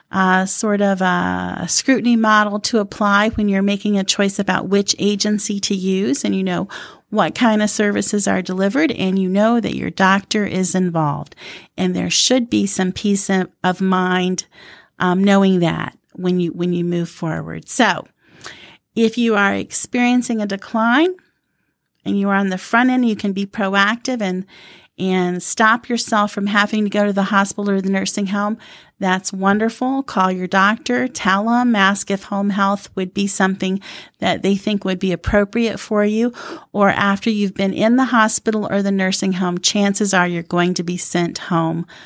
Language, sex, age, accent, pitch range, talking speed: English, female, 40-59, American, 185-210 Hz, 180 wpm